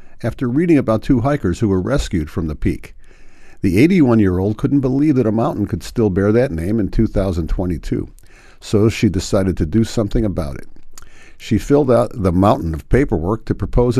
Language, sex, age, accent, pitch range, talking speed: English, male, 50-69, American, 90-120 Hz, 180 wpm